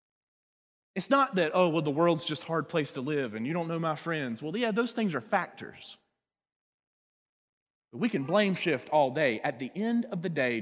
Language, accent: English, American